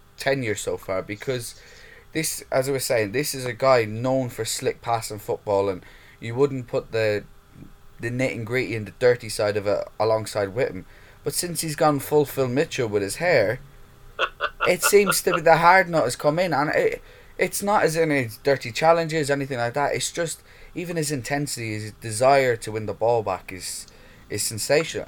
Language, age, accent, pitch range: English, 20-39, British, 105-145 Hz